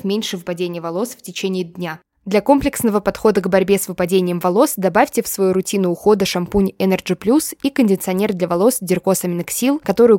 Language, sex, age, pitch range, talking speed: Russian, female, 20-39, 180-225 Hz, 165 wpm